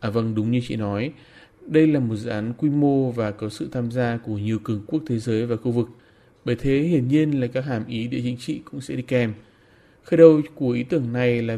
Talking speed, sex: 255 wpm, male